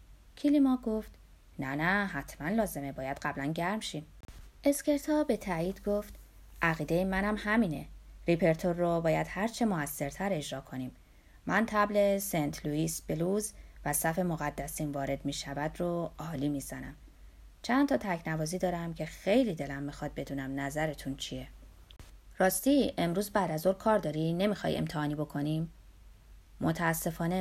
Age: 30-49